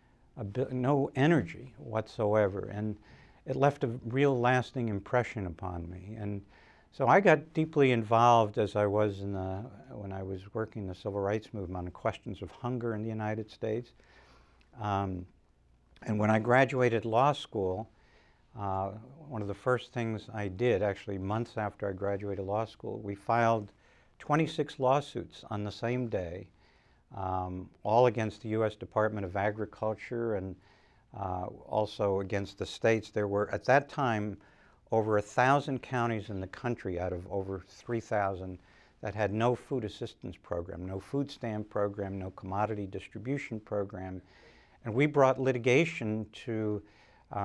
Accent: American